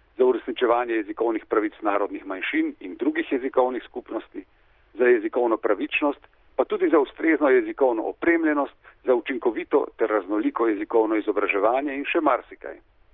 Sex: male